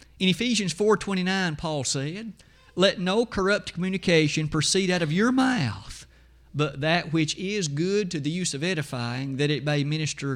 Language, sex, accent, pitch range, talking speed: English, male, American, 130-190 Hz, 160 wpm